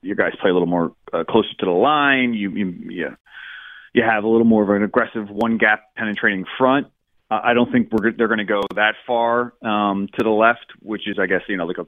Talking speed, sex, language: 250 wpm, male, English